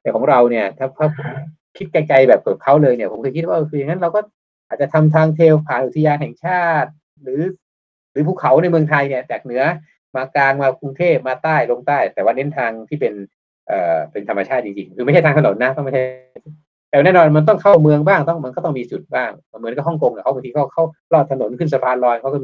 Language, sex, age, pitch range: Thai, male, 20-39, 120-155 Hz